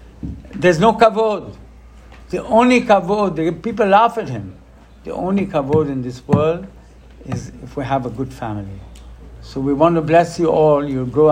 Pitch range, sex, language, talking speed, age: 130-185 Hz, male, English, 175 wpm, 60-79